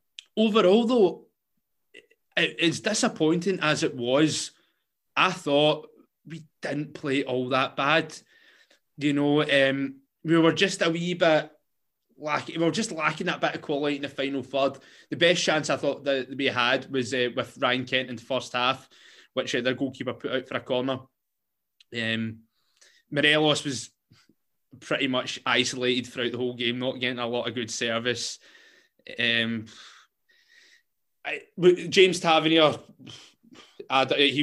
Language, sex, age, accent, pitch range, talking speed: English, male, 20-39, British, 125-165 Hz, 145 wpm